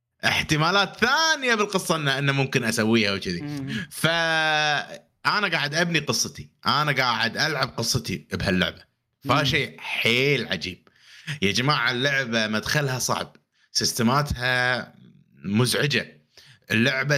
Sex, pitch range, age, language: male, 110-165 Hz, 30-49, Arabic